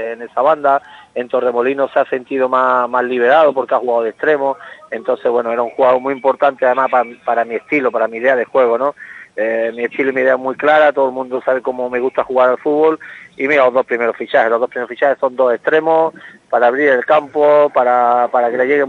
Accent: Spanish